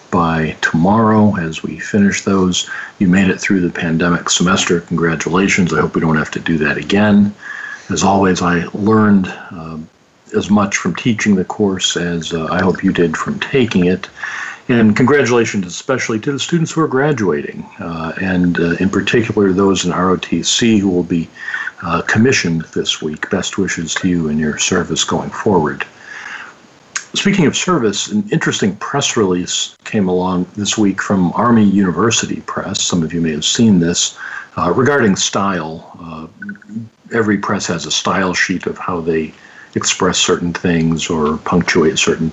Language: English